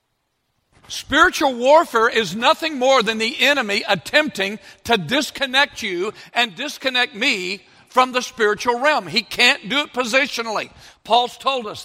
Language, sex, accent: English, male, American